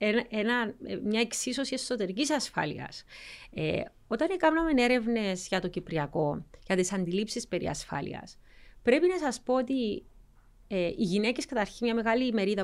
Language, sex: Greek, female